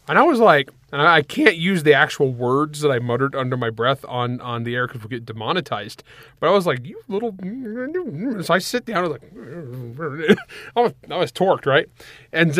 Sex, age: male, 30-49